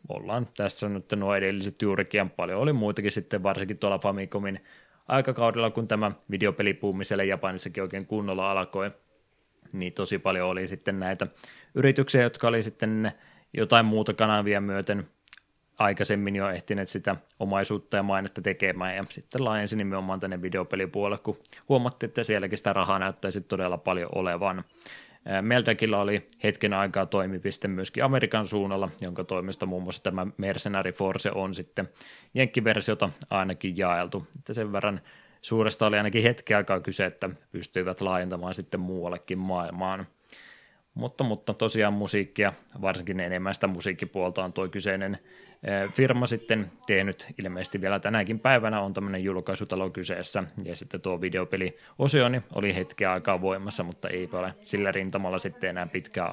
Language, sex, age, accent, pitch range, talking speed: Finnish, male, 20-39, native, 95-105 Hz, 140 wpm